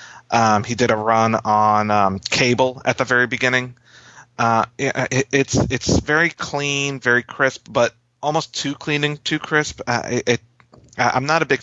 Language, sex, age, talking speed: English, male, 30-49, 175 wpm